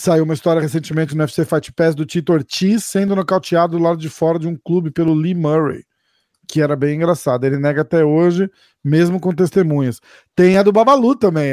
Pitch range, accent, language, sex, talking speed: 150-180 Hz, Brazilian, Portuguese, male, 205 wpm